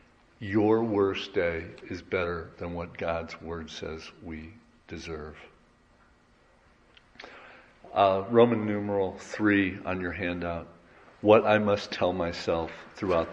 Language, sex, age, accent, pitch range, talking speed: English, male, 50-69, American, 85-110 Hz, 115 wpm